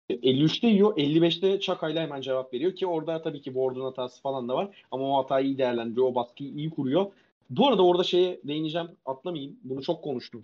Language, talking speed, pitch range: Turkish, 195 wpm, 130-190 Hz